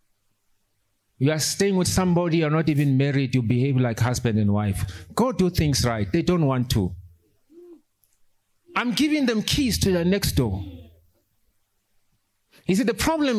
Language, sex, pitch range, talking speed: English, male, 100-170 Hz, 160 wpm